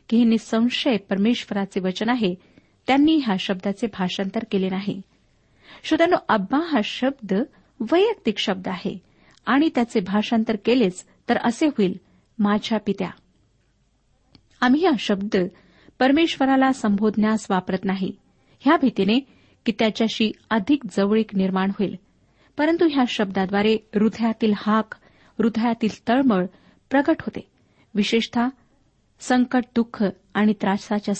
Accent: native